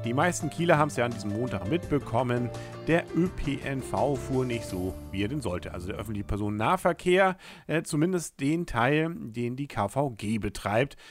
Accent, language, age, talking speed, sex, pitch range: German, German, 50-69, 165 wpm, male, 100-145 Hz